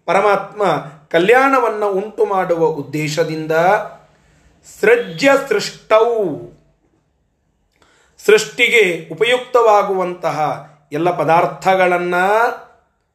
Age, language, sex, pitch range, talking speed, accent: 30-49, Kannada, male, 170-240 Hz, 50 wpm, native